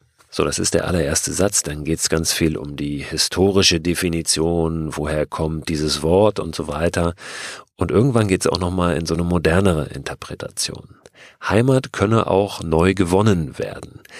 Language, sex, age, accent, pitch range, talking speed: German, male, 40-59, German, 80-100 Hz, 165 wpm